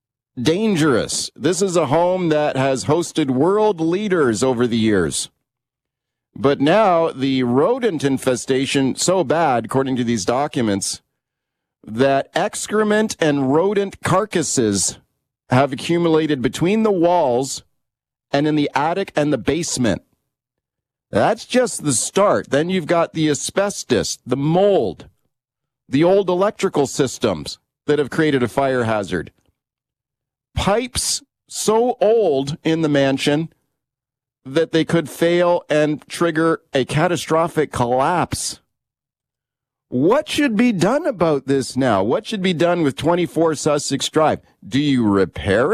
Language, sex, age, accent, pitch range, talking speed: English, male, 40-59, American, 130-170 Hz, 125 wpm